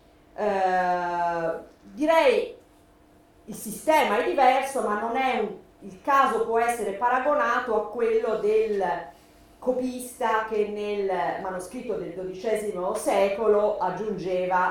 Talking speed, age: 105 wpm, 40-59